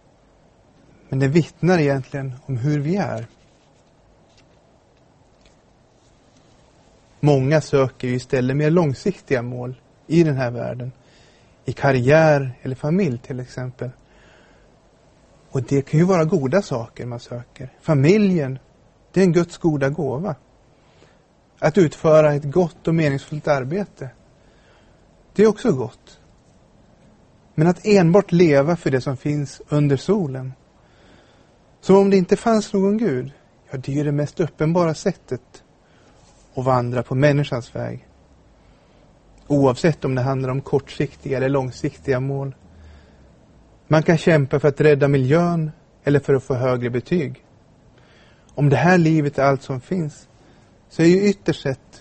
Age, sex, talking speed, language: 30-49, male, 130 wpm, Swedish